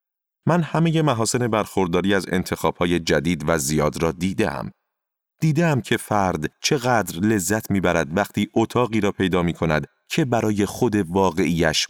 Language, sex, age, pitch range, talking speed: Persian, male, 30-49, 90-125 Hz, 135 wpm